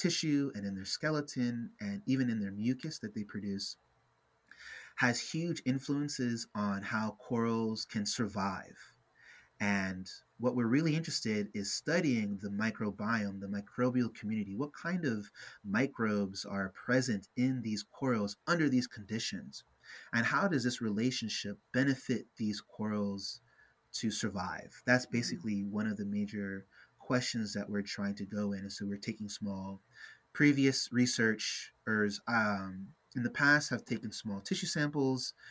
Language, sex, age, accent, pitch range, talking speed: English, male, 30-49, American, 105-125 Hz, 145 wpm